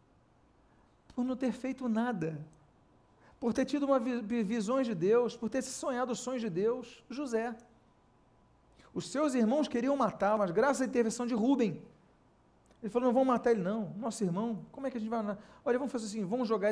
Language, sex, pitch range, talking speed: Portuguese, male, 190-240 Hz, 195 wpm